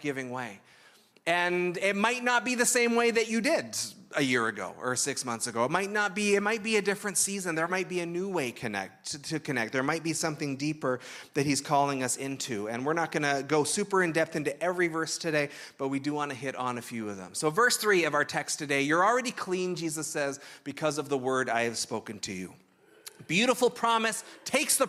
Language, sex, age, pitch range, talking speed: English, male, 30-49, 145-205 Hz, 235 wpm